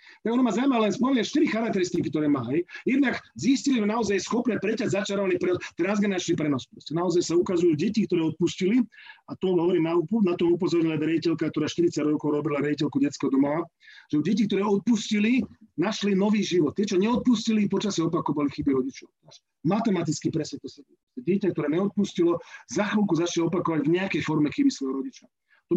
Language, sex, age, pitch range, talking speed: Slovak, male, 40-59, 160-220 Hz, 165 wpm